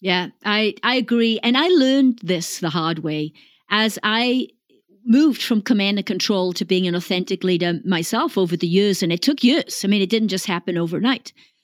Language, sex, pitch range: English, female, 190-255 Hz